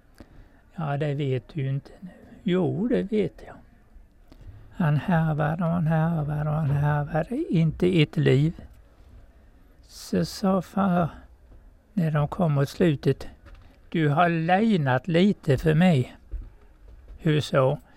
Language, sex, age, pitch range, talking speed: Swedish, male, 60-79, 135-180 Hz, 125 wpm